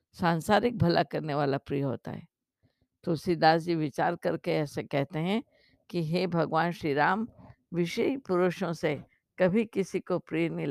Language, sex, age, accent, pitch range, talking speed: Hindi, female, 50-69, native, 165-215 Hz, 155 wpm